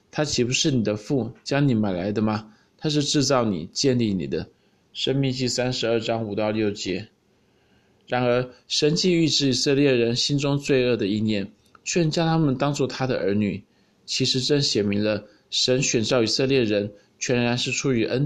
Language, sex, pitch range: Chinese, male, 110-135 Hz